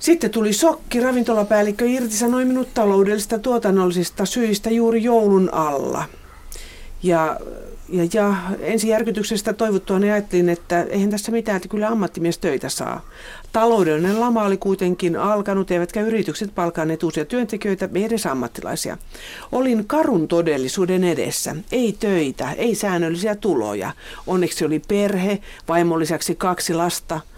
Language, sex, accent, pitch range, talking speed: Finnish, female, native, 170-215 Hz, 125 wpm